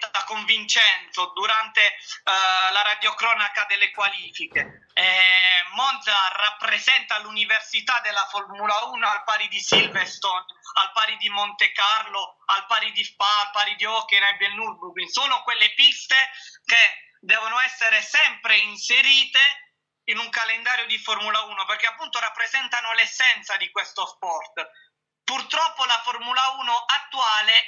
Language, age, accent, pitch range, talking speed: Italian, 20-39, native, 205-255 Hz, 130 wpm